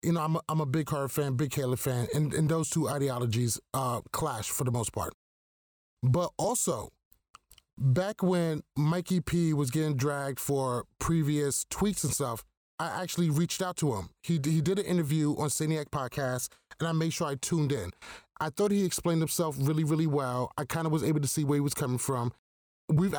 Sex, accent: male, American